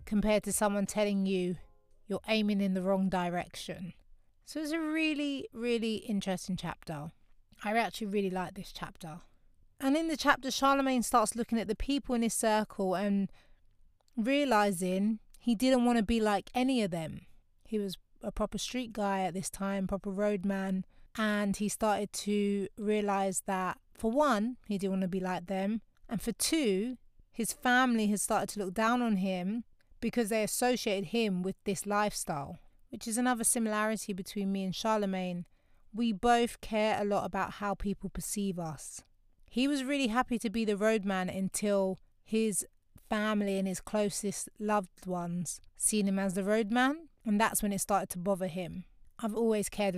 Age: 30-49